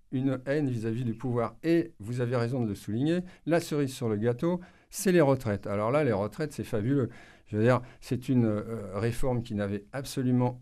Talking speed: 205 wpm